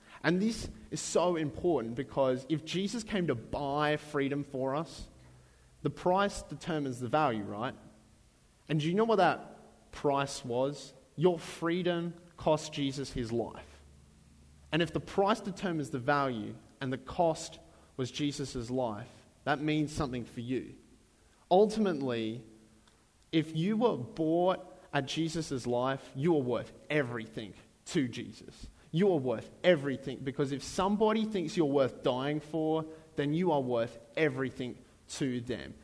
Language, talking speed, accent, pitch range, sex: English, 140 wpm, Australian, 125-170 Hz, male